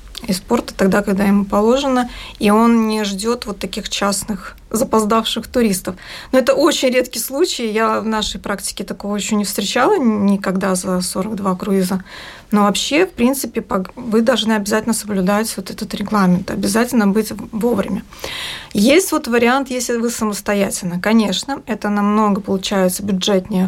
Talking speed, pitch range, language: 145 wpm, 200-235 Hz, Russian